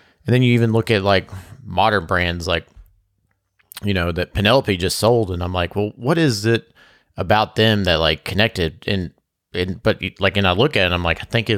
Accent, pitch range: American, 90-115 Hz